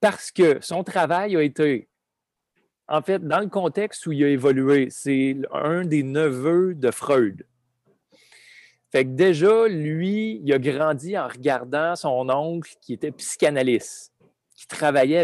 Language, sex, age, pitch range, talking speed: French, male, 30-49, 130-175 Hz, 145 wpm